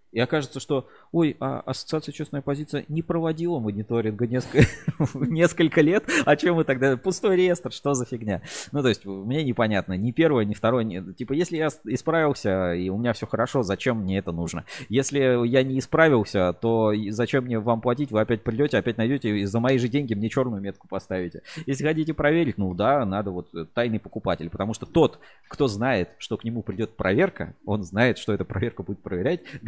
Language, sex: Russian, male